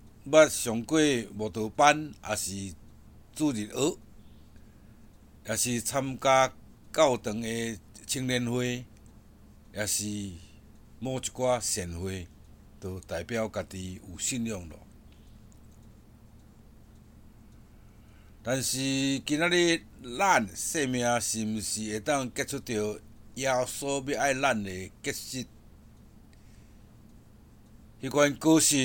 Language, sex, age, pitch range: Chinese, male, 60-79, 105-135 Hz